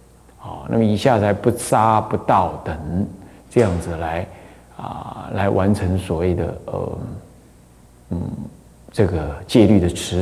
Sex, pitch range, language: male, 90-130 Hz, Chinese